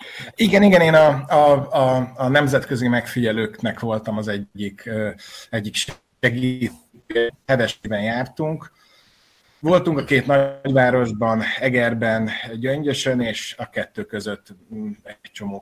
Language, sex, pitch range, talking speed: Hungarian, male, 115-145 Hz, 100 wpm